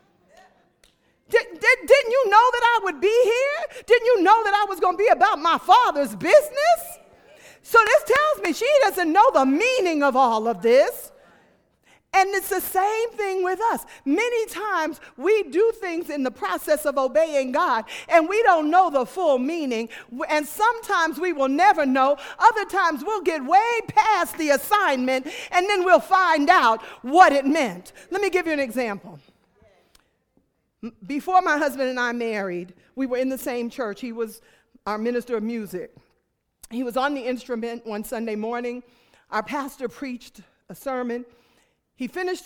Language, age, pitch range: English, 40-59, 245-370 Hz